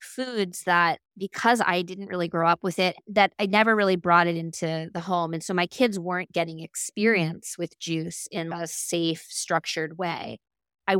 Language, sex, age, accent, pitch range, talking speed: English, female, 20-39, American, 170-210 Hz, 185 wpm